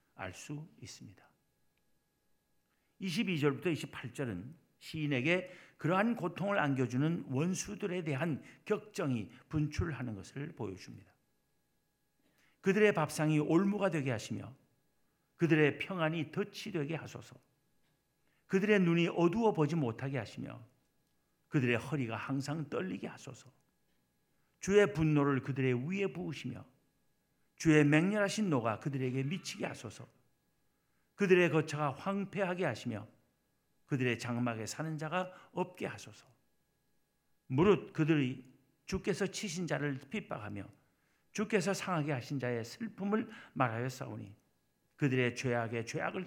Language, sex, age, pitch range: Korean, male, 50-69, 125-180 Hz